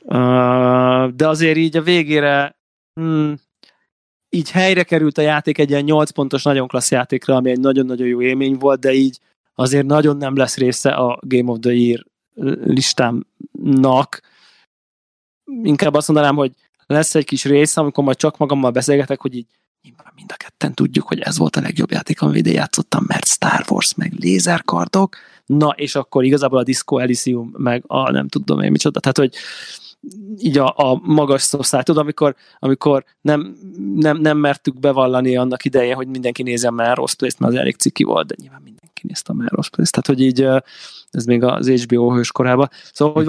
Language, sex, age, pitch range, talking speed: Hungarian, male, 20-39, 125-150 Hz, 175 wpm